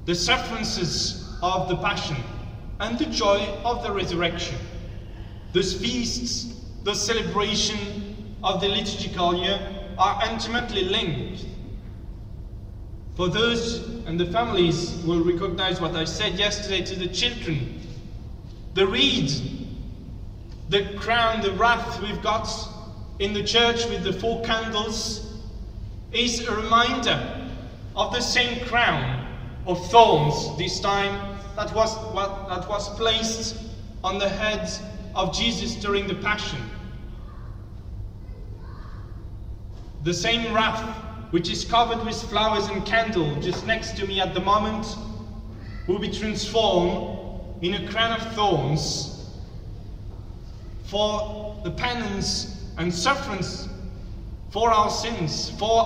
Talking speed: 120 wpm